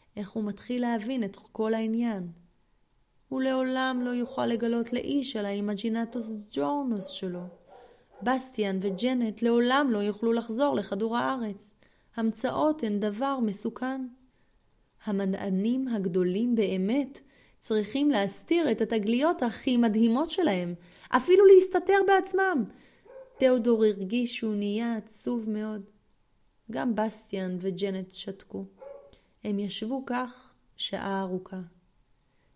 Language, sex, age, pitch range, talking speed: Hebrew, female, 30-49, 195-255 Hz, 105 wpm